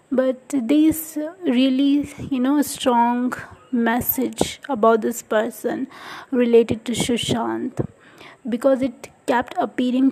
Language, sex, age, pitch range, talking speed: English, female, 20-39, 240-275 Hz, 100 wpm